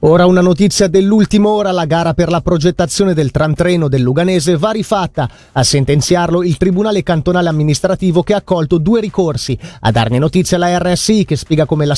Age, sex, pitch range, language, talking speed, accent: 30-49, male, 150-205 Hz, Italian, 185 wpm, native